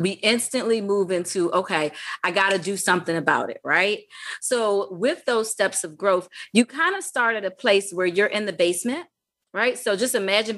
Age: 30-49